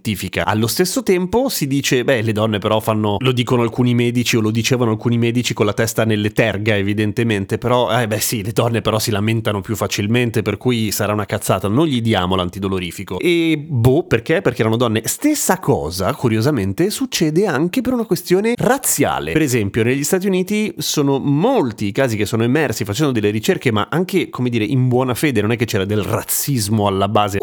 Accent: native